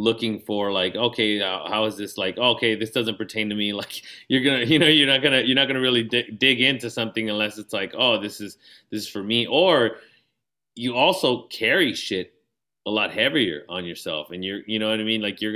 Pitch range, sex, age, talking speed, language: 105-130 Hz, male, 30-49, 230 wpm, English